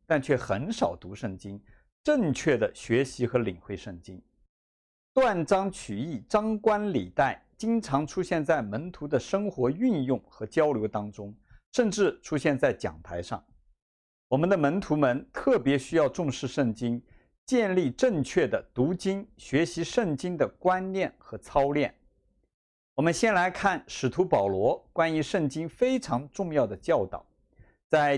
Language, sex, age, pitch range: Chinese, male, 50-69, 130-220 Hz